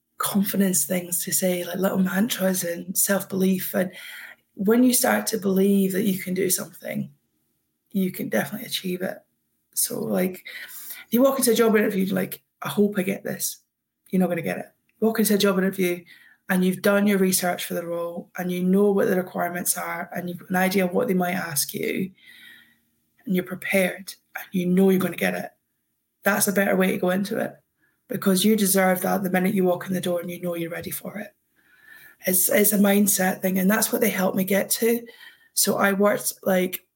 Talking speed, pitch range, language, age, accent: 210 wpm, 185-205 Hz, English, 20-39, British